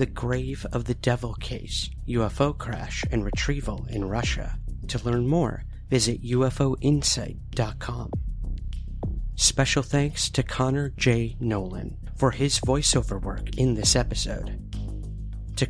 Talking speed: 120 wpm